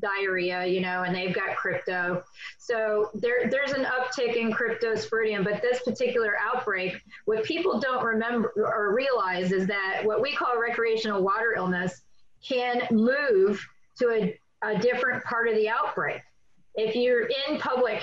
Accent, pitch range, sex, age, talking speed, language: American, 200-235 Hz, female, 30-49, 150 wpm, English